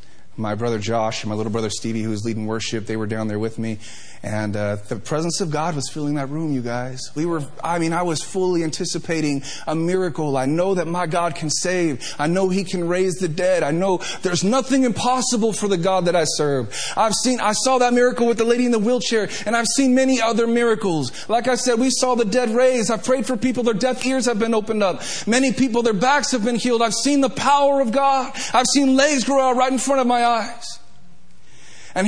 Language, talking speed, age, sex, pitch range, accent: English, 240 wpm, 30-49, male, 155-255 Hz, American